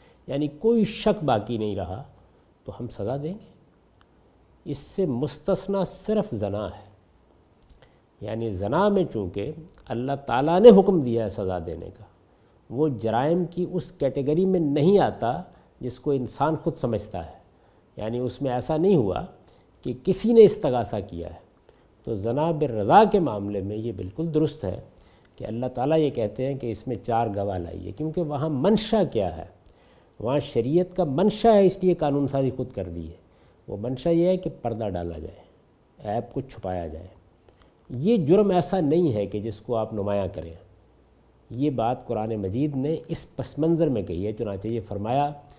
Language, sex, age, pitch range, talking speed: Urdu, male, 50-69, 100-165 Hz, 175 wpm